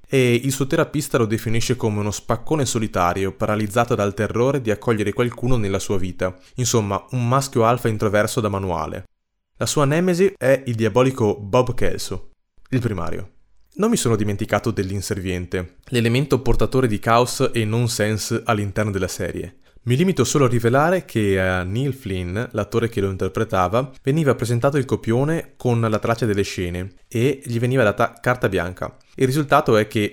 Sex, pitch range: male, 100-130 Hz